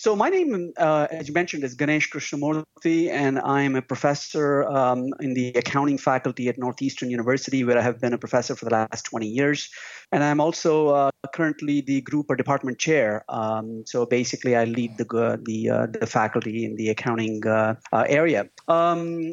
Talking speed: 185 wpm